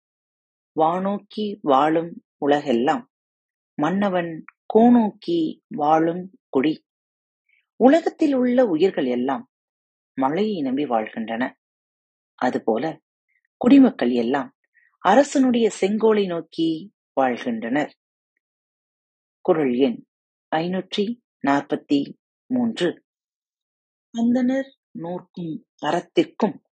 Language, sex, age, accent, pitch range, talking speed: Tamil, female, 30-49, native, 160-260 Hz, 65 wpm